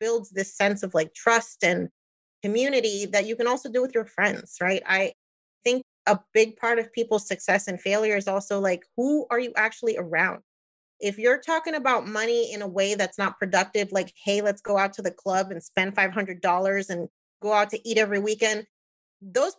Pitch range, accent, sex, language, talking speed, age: 200-255 Hz, American, female, English, 200 wpm, 30-49